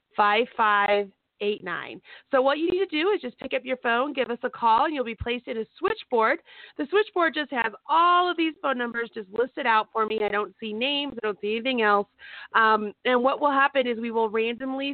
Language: English